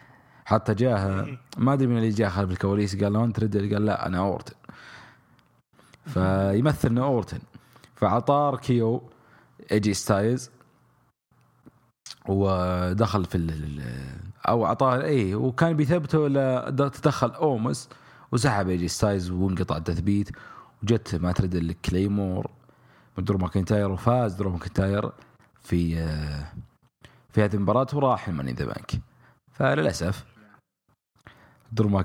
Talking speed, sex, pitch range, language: 100 wpm, male, 90-120 Hz, English